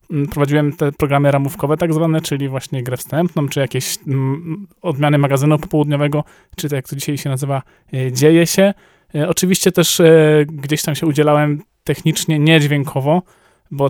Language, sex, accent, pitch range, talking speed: Polish, male, native, 140-160 Hz, 145 wpm